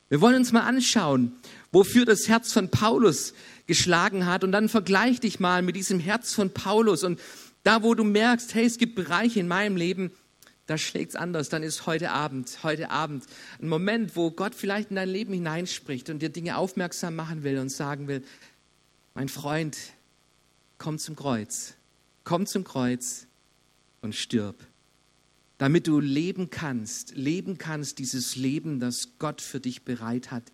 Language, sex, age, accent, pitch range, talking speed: German, male, 50-69, German, 130-210 Hz, 170 wpm